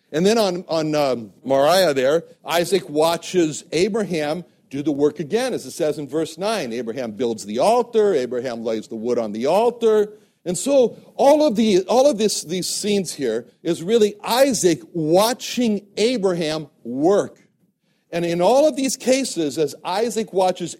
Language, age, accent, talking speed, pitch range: English, 60-79, American, 165 wpm, 155-215 Hz